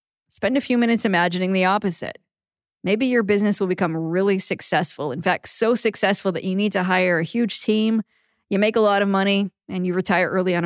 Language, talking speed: English, 210 wpm